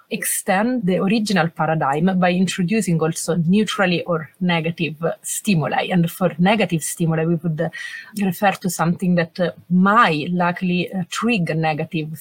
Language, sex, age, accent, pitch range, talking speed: English, female, 30-49, Italian, 165-195 Hz, 140 wpm